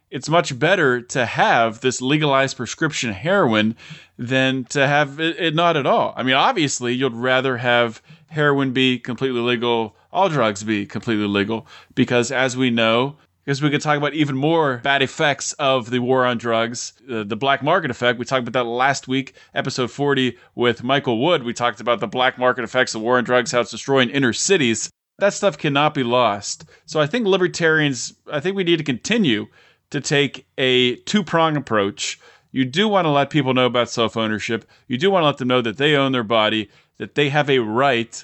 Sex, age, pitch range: male, 20-39, 120-145 Hz